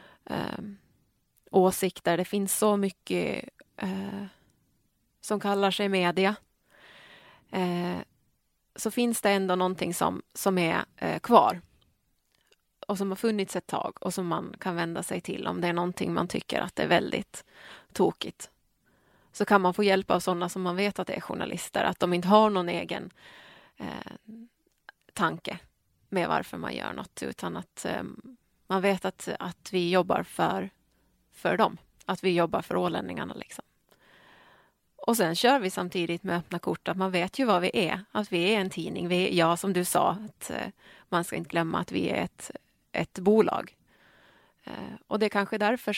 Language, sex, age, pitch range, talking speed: Swedish, female, 30-49, 180-210 Hz, 175 wpm